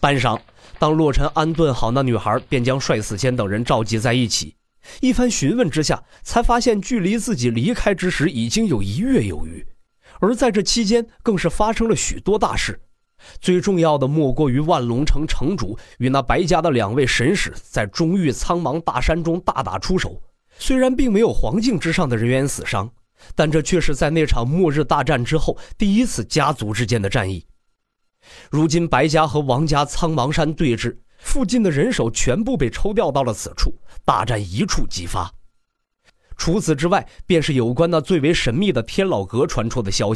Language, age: Chinese, 30-49